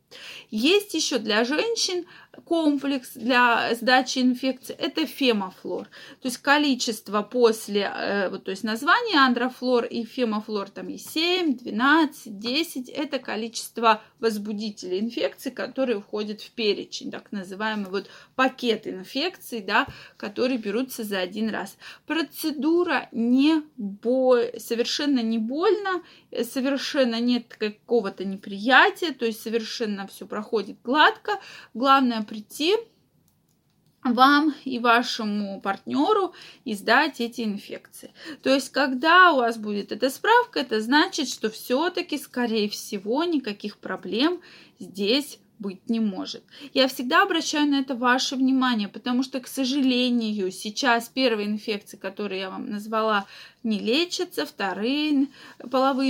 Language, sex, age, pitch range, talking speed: Russian, female, 20-39, 220-270 Hz, 120 wpm